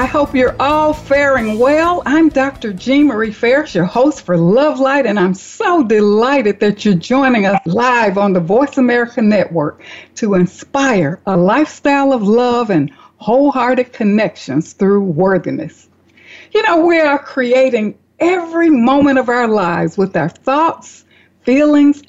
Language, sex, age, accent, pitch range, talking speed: English, female, 60-79, American, 190-275 Hz, 145 wpm